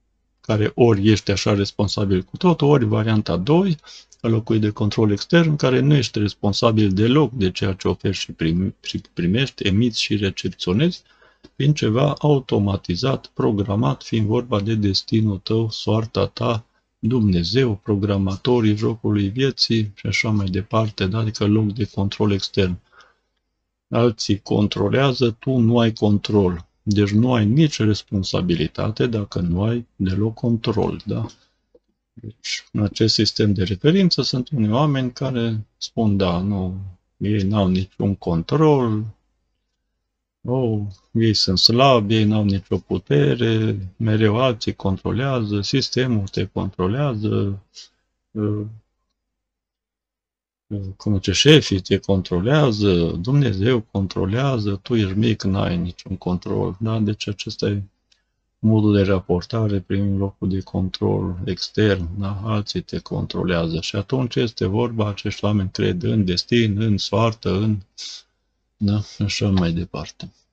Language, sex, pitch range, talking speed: Romanian, male, 100-115 Hz, 125 wpm